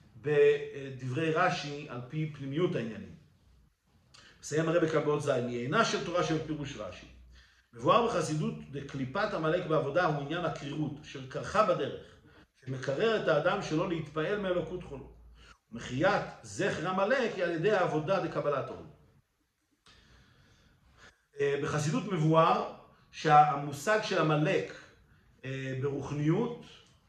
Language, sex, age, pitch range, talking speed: Hebrew, male, 50-69, 145-195 Hz, 110 wpm